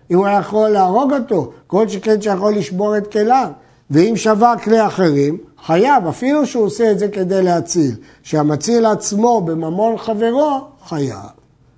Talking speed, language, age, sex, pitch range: 145 wpm, Hebrew, 50-69, male, 165-230 Hz